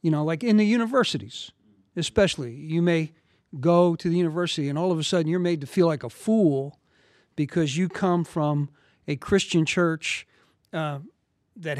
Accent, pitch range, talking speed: American, 145-180 Hz, 175 wpm